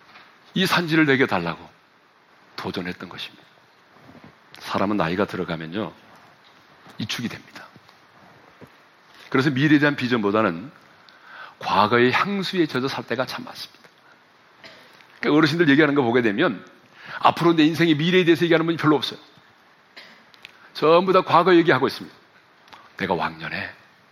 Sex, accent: male, native